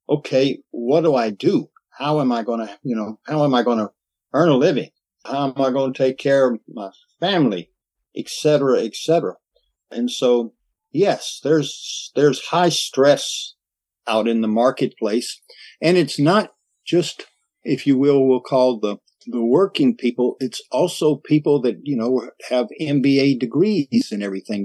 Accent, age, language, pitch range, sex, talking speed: American, 50-69, English, 120-160 Hz, male, 165 wpm